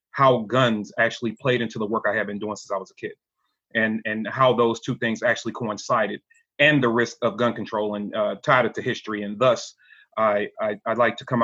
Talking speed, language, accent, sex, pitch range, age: 220 wpm, English, American, male, 110-135 Hz, 30-49